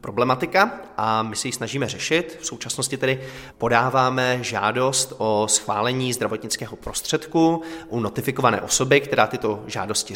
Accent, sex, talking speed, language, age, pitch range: native, male, 125 wpm, Czech, 20-39, 110-130 Hz